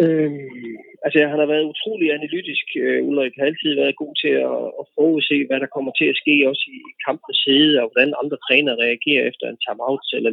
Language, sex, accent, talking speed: Danish, male, native, 210 wpm